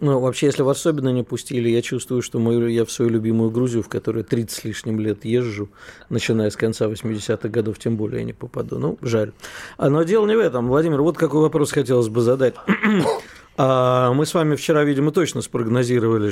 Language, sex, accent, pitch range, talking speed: Russian, male, native, 120-150 Hz, 200 wpm